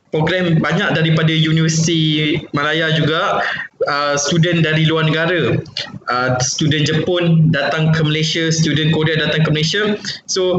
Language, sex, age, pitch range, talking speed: Malay, male, 20-39, 155-190 Hz, 130 wpm